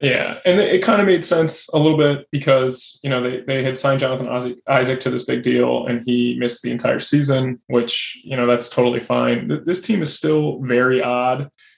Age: 20-39